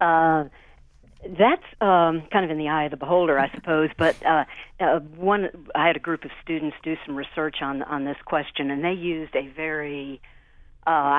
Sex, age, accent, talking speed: female, 50-69, American, 195 wpm